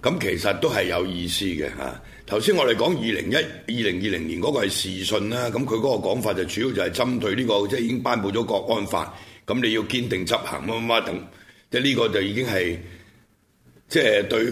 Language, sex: Chinese, male